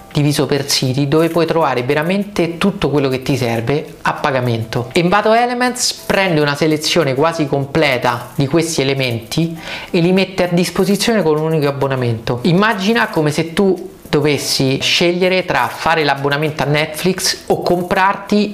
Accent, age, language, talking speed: native, 30-49, Italian, 150 wpm